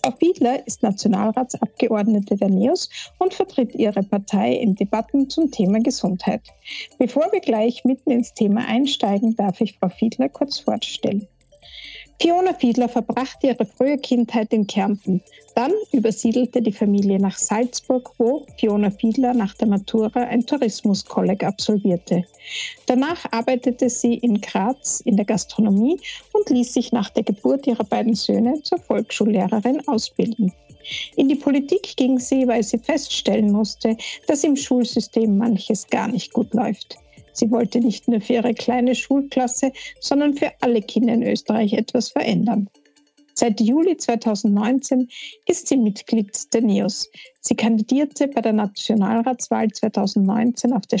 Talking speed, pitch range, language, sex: 140 wpm, 215-260 Hz, German, female